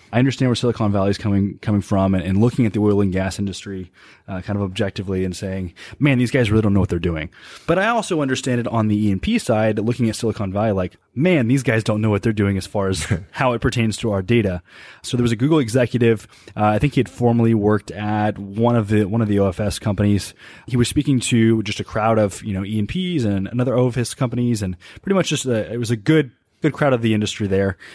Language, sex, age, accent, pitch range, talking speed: English, male, 20-39, American, 100-120 Hz, 255 wpm